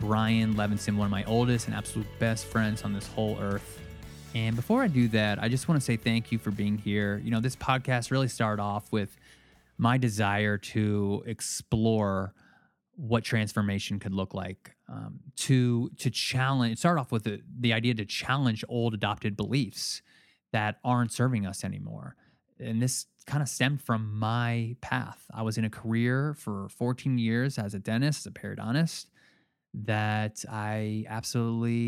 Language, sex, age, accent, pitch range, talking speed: English, male, 20-39, American, 105-120 Hz, 170 wpm